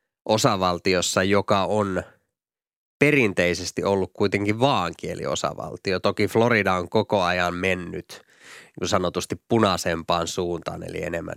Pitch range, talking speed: 90-105 Hz, 110 wpm